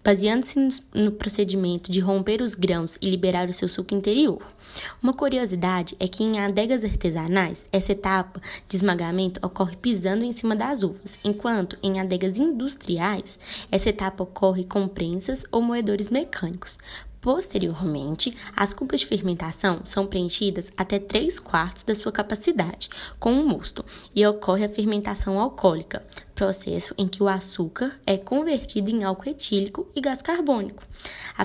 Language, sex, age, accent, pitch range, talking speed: Portuguese, female, 10-29, Brazilian, 190-230 Hz, 150 wpm